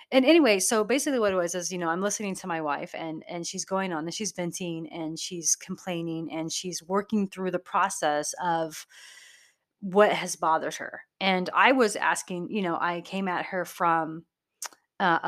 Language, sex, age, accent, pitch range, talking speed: English, female, 30-49, American, 165-205 Hz, 195 wpm